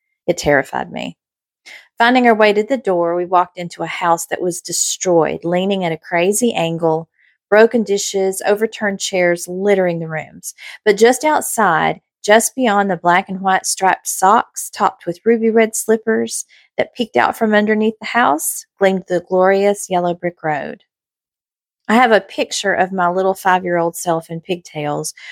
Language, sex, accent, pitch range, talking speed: English, female, American, 170-210 Hz, 165 wpm